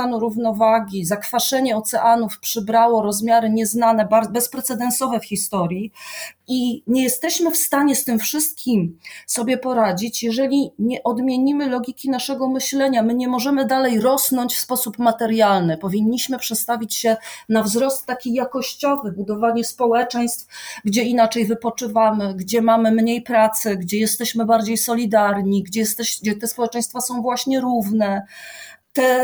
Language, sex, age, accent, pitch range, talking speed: Polish, female, 30-49, native, 220-255 Hz, 125 wpm